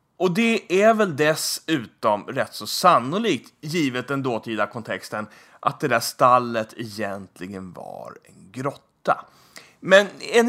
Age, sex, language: 30-49, male, English